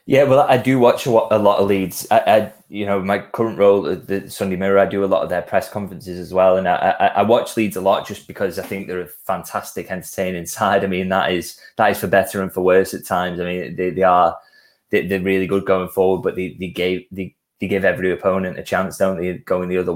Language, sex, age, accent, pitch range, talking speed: English, male, 20-39, British, 90-100 Hz, 260 wpm